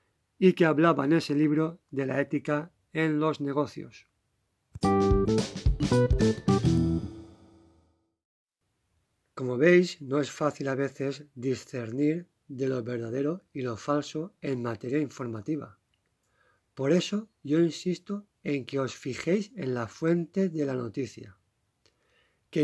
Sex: male